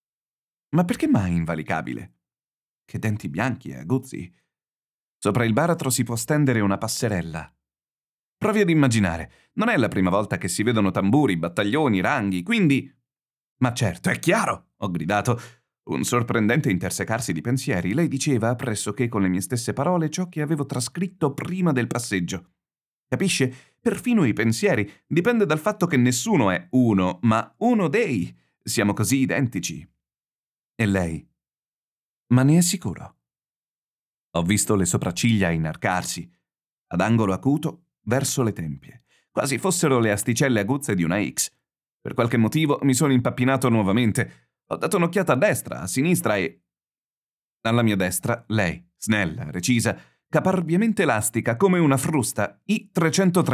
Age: 30-49